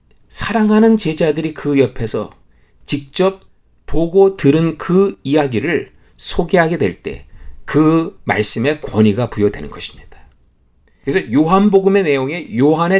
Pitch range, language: 105-175 Hz, Korean